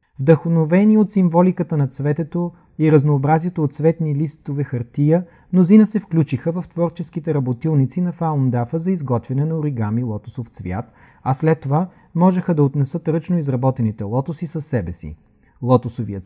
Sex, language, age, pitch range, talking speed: male, Bulgarian, 30-49, 120-170 Hz, 140 wpm